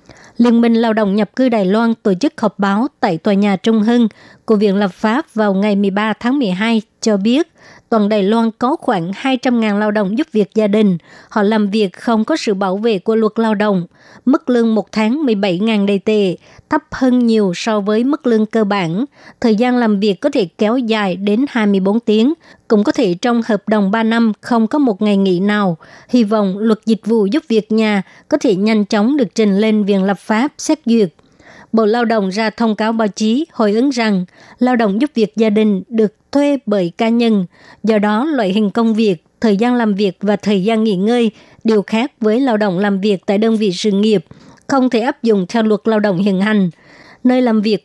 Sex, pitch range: male, 205-235 Hz